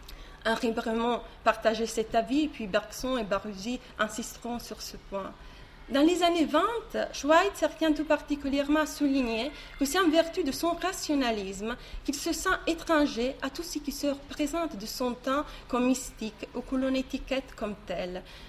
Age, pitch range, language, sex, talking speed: 30-49, 220-270 Hz, French, female, 165 wpm